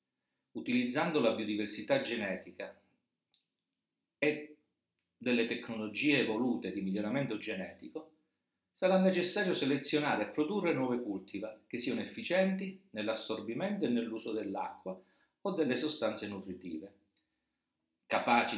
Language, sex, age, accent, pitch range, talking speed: Italian, male, 50-69, native, 105-150 Hz, 95 wpm